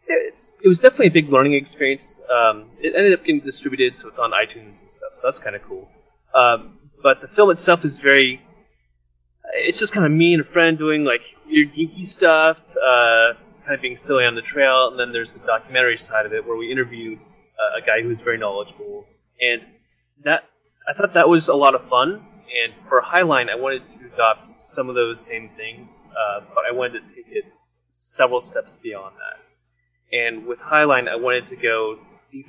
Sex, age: male, 20-39